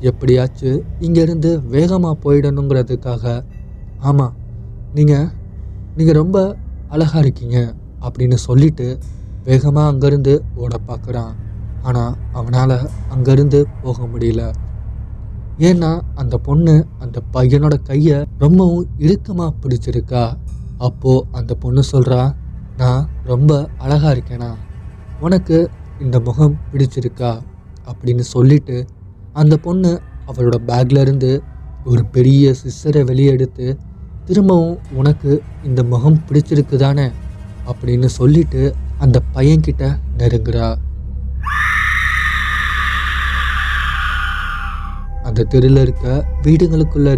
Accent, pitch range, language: native, 105-145 Hz, Tamil